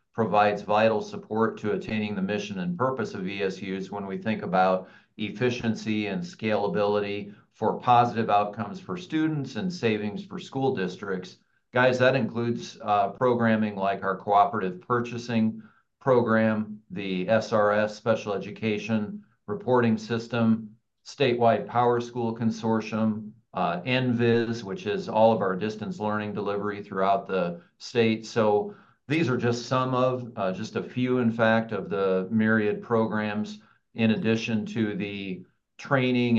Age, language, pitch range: 40-59, English, 100-120 Hz